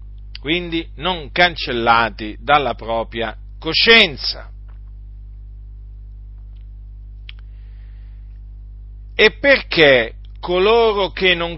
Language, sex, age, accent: Italian, male, 50-69, native